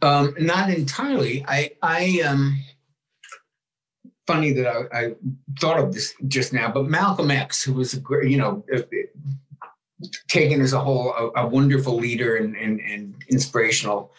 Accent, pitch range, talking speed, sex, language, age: American, 130-150 Hz, 155 wpm, male, English, 60-79